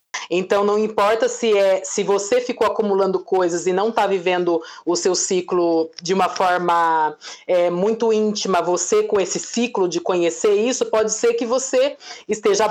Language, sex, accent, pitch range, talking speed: Portuguese, female, Brazilian, 190-240 Hz, 155 wpm